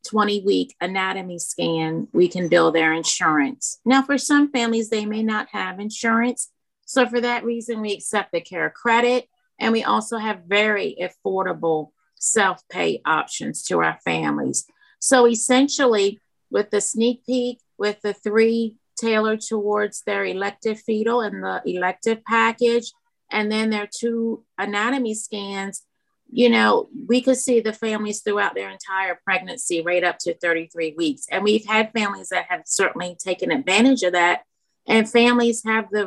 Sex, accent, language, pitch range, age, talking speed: female, American, English, 185-235 Hz, 40-59, 155 wpm